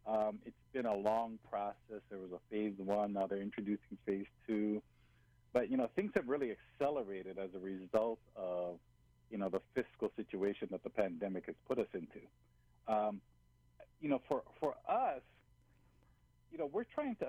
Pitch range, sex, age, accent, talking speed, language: 95-120 Hz, male, 50-69, American, 175 wpm, English